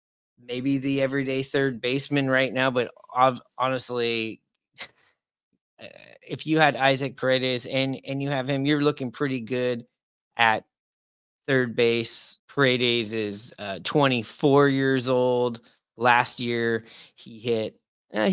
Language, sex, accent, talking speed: English, male, American, 120 wpm